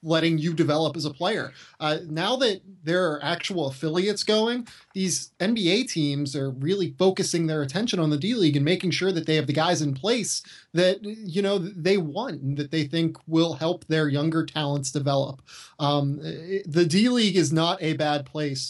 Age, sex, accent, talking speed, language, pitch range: 20-39, male, American, 185 wpm, English, 140-165 Hz